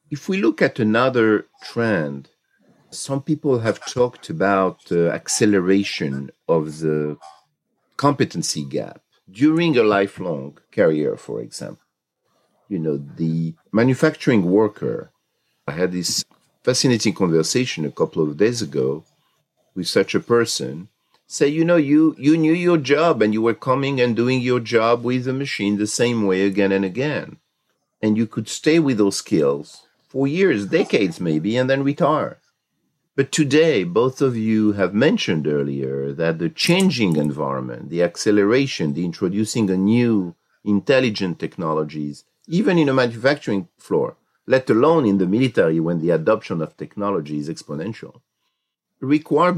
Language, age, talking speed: English, 50-69, 145 wpm